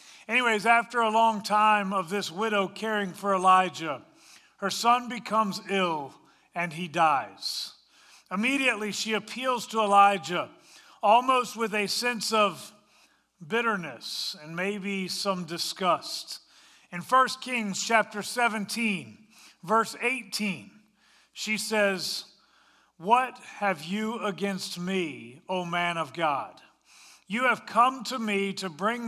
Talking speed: 120 wpm